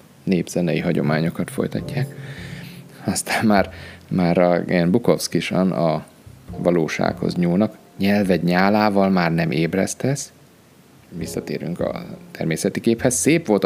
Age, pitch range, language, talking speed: 30-49, 85-125 Hz, Hungarian, 95 wpm